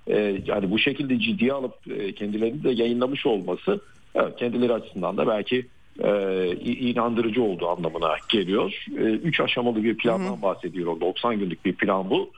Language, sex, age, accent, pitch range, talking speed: Turkish, male, 50-69, native, 100-125 Hz, 140 wpm